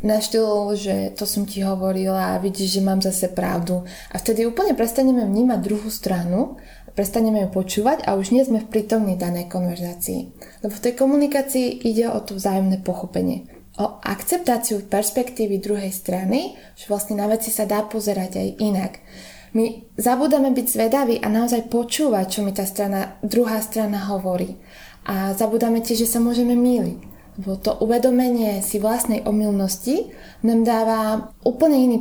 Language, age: Slovak, 20-39